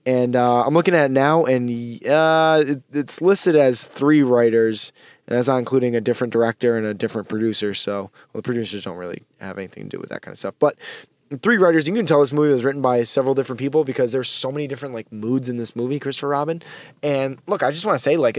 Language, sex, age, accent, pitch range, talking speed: English, male, 20-39, American, 120-155 Hz, 240 wpm